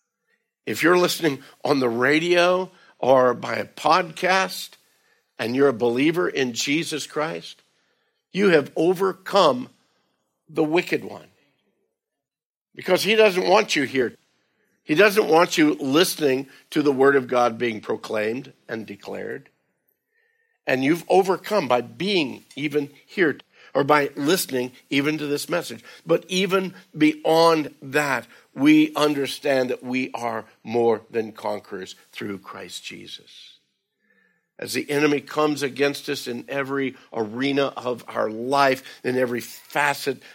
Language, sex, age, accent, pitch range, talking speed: English, male, 60-79, American, 125-165 Hz, 130 wpm